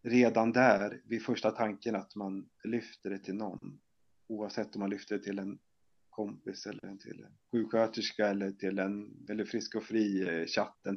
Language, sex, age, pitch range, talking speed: Swedish, male, 30-49, 100-110 Hz, 165 wpm